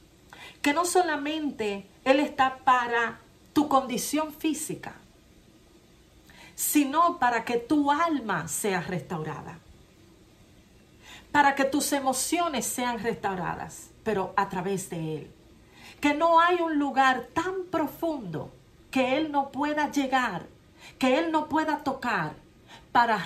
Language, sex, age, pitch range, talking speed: Spanish, female, 40-59, 180-275 Hz, 115 wpm